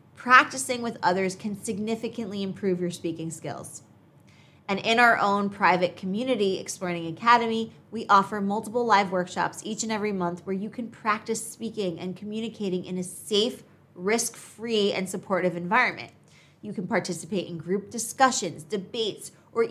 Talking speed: 145 wpm